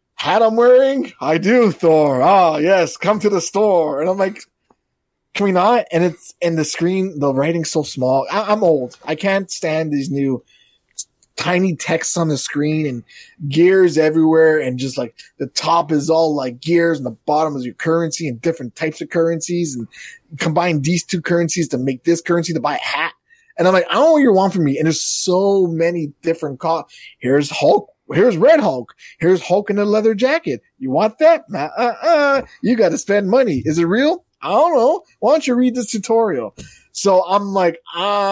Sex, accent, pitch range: male, American, 140-190 Hz